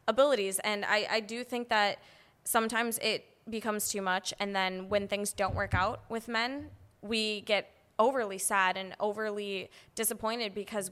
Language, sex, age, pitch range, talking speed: English, female, 10-29, 195-225 Hz, 160 wpm